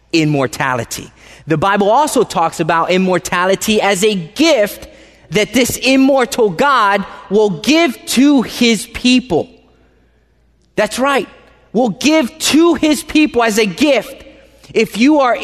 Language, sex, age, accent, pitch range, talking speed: English, male, 30-49, American, 160-225 Hz, 125 wpm